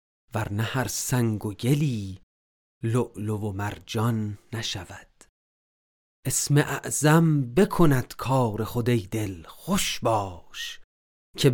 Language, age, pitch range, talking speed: Persian, 40-59, 100-140 Hz, 95 wpm